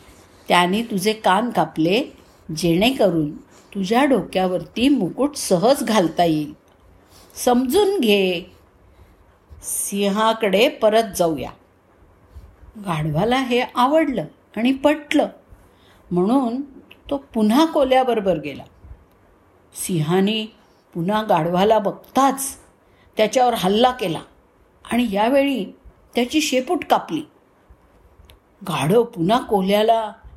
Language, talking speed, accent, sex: Marathi, 55 wpm, native, female